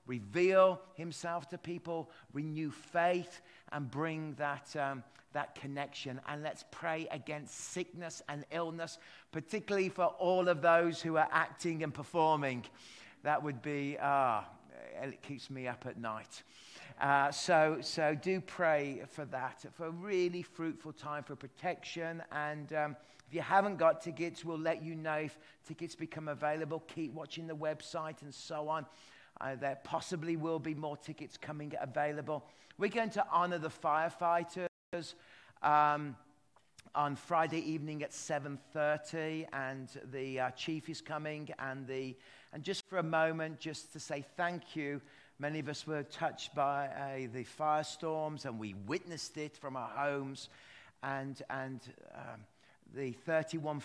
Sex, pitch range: male, 140-165 Hz